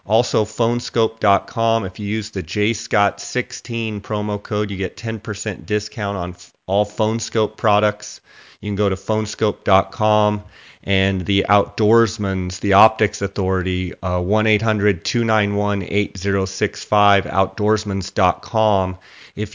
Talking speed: 105 wpm